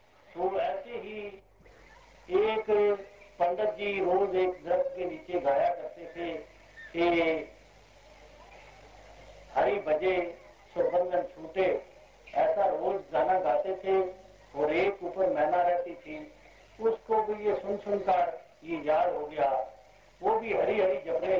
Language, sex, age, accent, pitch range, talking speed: Hindi, male, 60-79, native, 175-220 Hz, 110 wpm